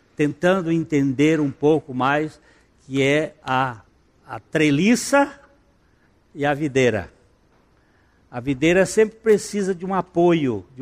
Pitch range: 120-145 Hz